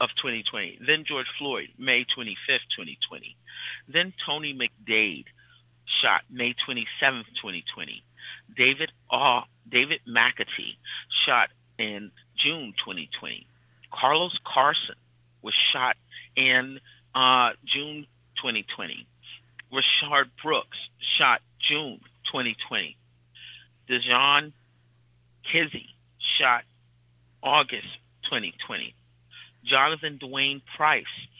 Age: 30-49